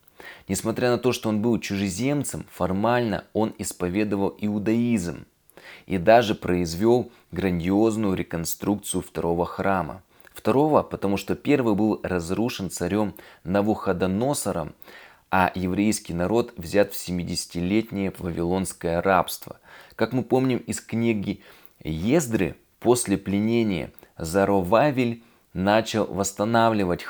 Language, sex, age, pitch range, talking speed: Russian, male, 20-39, 90-115 Hz, 100 wpm